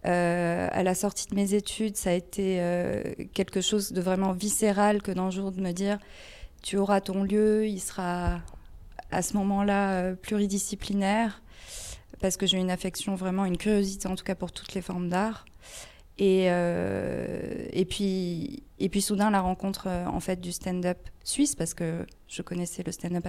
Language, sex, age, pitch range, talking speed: French, female, 20-39, 175-200 Hz, 180 wpm